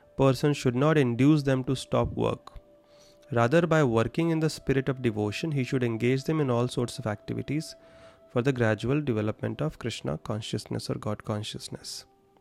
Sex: male